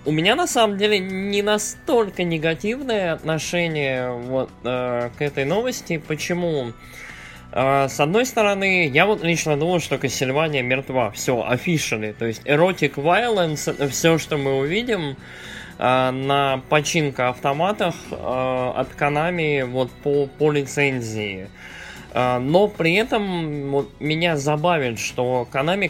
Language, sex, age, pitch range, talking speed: Russian, male, 20-39, 125-165 Hz, 115 wpm